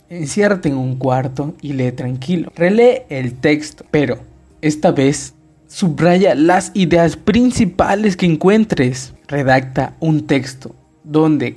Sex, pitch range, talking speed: male, 135-185 Hz, 120 wpm